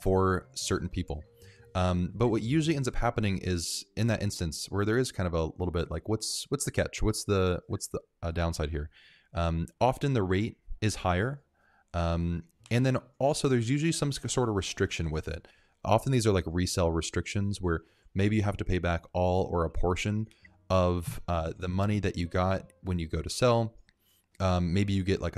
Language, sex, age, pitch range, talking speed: English, male, 20-39, 85-110 Hz, 205 wpm